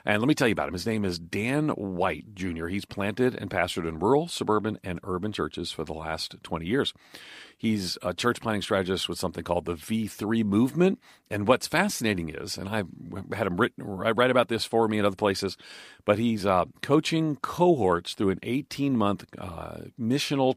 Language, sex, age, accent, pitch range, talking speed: English, male, 40-59, American, 90-115 Hz, 195 wpm